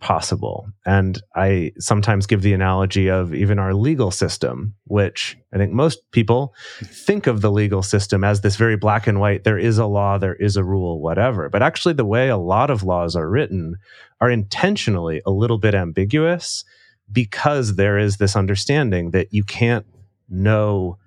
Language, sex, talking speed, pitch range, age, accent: English, male, 175 wpm, 95-115 Hz, 30-49, American